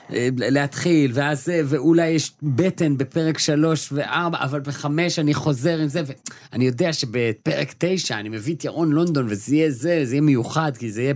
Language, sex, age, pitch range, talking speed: Hebrew, male, 30-49, 100-140 Hz, 175 wpm